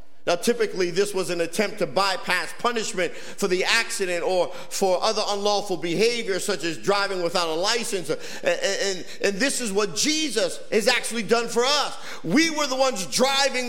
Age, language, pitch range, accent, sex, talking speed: 50-69, English, 205-275 Hz, American, male, 170 wpm